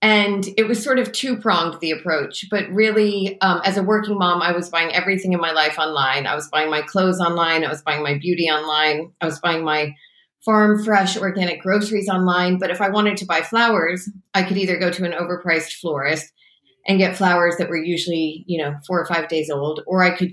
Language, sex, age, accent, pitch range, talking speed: English, female, 30-49, American, 160-195 Hz, 220 wpm